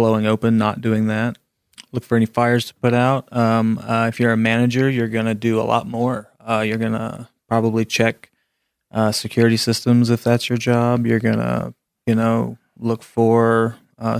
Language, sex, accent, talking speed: English, male, American, 195 wpm